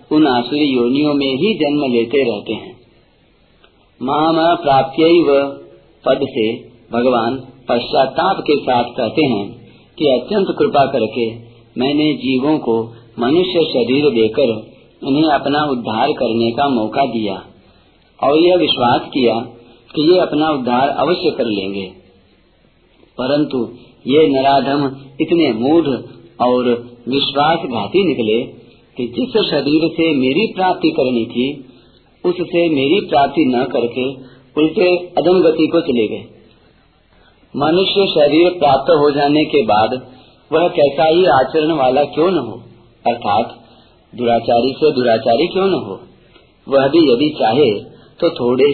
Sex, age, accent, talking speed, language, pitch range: male, 50-69, native, 125 wpm, Hindi, 120-155 Hz